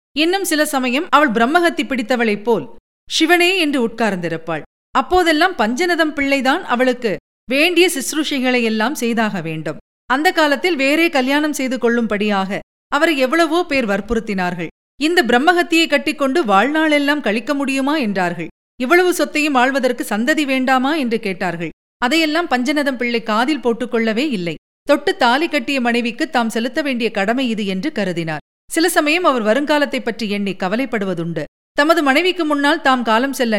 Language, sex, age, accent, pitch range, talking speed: Tamil, female, 40-59, native, 210-295 Hz, 130 wpm